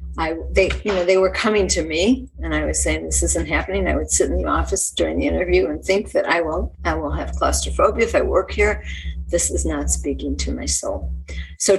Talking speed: 235 wpm